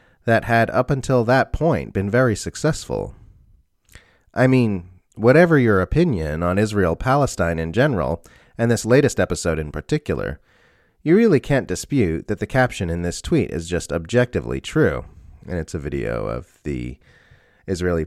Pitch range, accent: 85-115 Hz, American